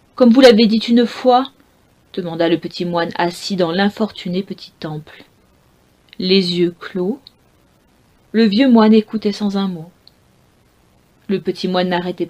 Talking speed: 140 wpm